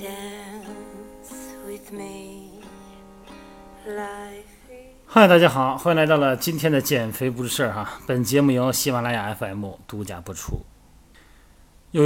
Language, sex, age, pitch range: Chinese, male, 30-49, 105-155 Hz